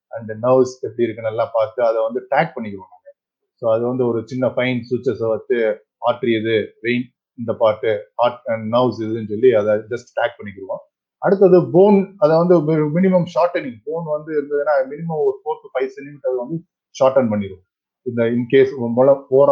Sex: male